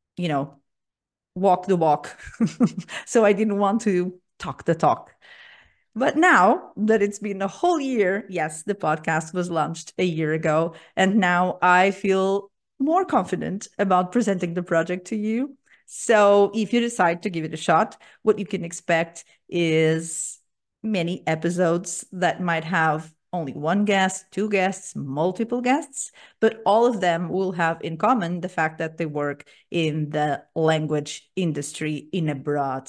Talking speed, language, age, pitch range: 160 wpm, English, 30-49, 160-200 Hz